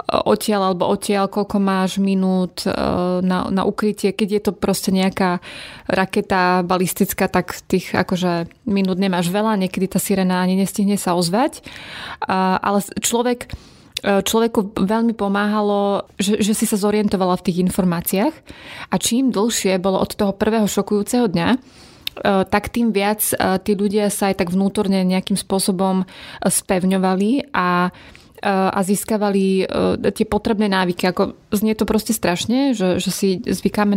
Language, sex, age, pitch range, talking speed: Slovak, female, 20-39, 190-210 Hz, 135 wpm